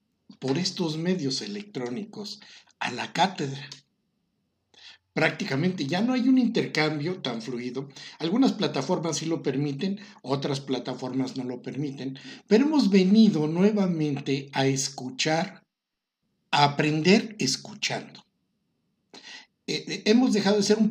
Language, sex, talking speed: Spanish, male, 120 wpm